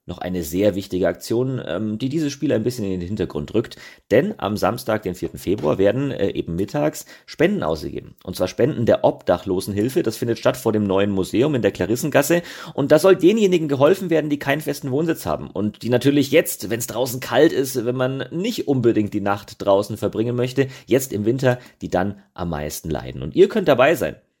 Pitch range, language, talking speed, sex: 100-145 Hz, German, 200 wpm, male